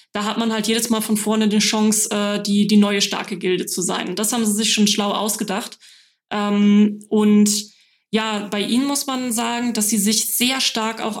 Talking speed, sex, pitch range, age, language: 200 wpm, female, 200-225 Hz, 20-39, German